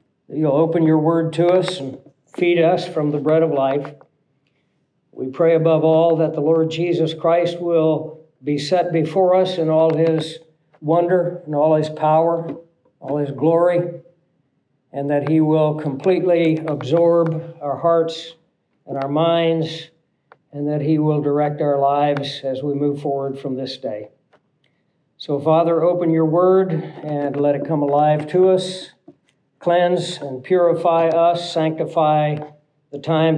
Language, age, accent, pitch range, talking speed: English, 60-79, American, 150-170 Hz, 150 wpm